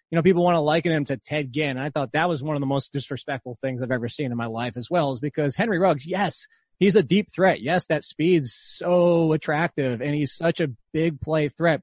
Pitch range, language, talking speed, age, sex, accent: 145-185 Hz, English, 255 wpm, 30-49, male, American